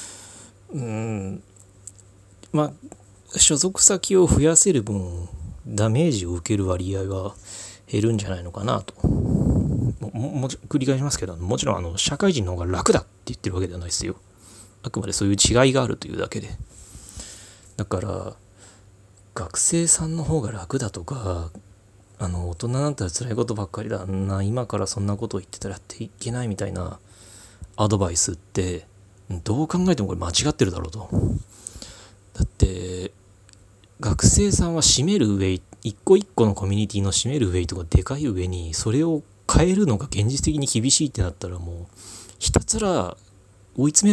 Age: 30-49